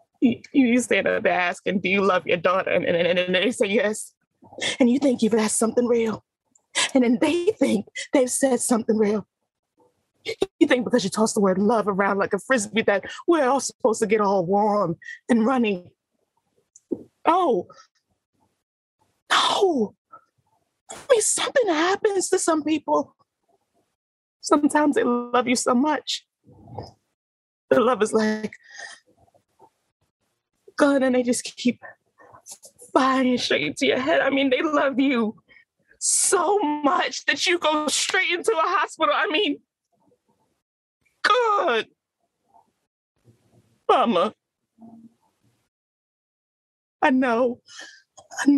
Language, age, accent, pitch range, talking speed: English, 20-39, American, 220-300 Hz, 130 wpm